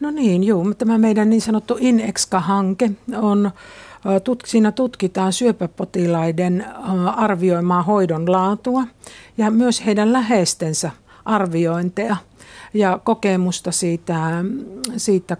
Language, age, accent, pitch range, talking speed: Finnish, 60-79, native, 175-210 Hz, 95 wpm